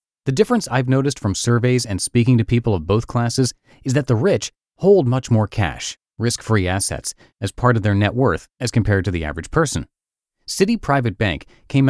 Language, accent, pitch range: English, American, 100-135 Hz